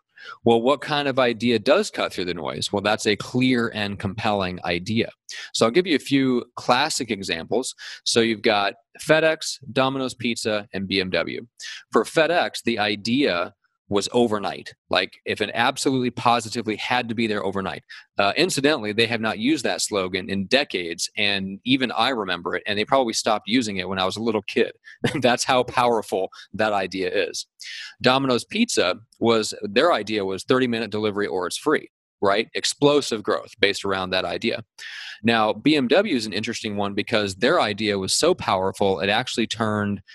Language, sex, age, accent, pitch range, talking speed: English, male, 30-49, American, 100-125 Hz, 170 wpm